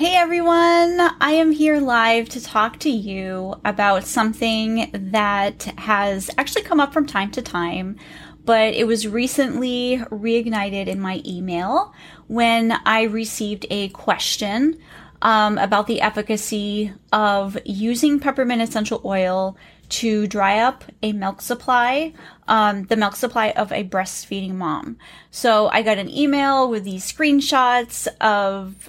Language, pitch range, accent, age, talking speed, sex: English, 200-250 Hz, American, 10-29, 135 wpm, female